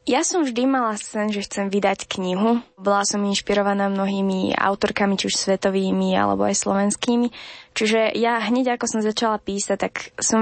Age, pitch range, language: 20-39, 195-220 Hz, Slovak